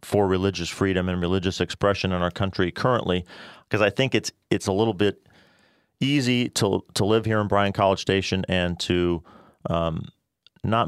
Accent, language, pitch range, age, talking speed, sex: American, English, 85-100 Hz, 40-59, 170 wpm, male